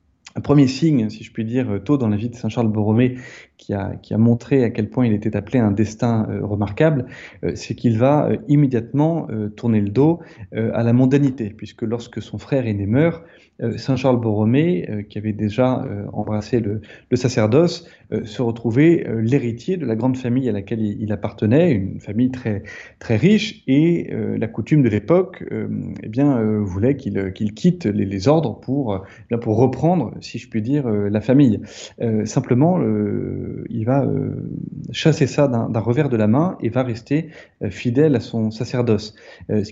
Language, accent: French, French